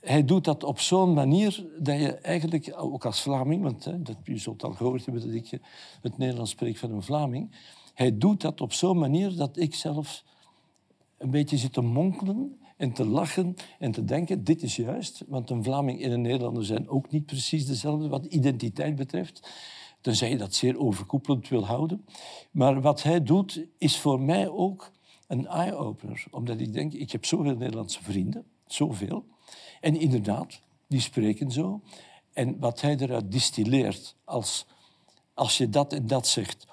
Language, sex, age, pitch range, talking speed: Dutch, male, 60-79, 120-155 Hz, 175 wpm